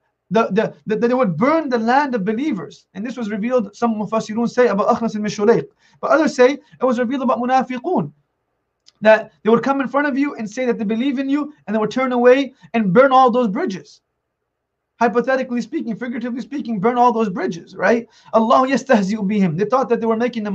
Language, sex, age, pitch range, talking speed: English, male, 30-49, 190-245 Hz, 200 wpm